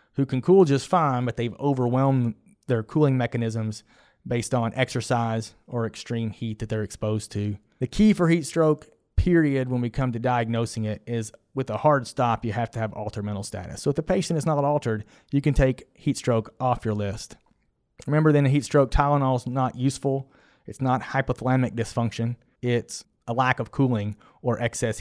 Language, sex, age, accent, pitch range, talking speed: English, male, 30-49, American, 115-135 Hz, 190 wpm